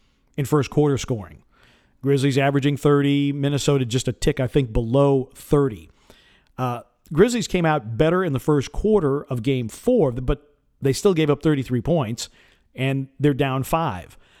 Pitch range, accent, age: 125-155 Hz, American, 50-69